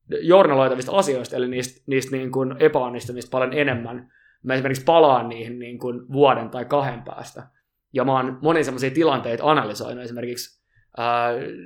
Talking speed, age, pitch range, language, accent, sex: 145 wpm, 20-39, 125-145 Hz, Finnish, native, male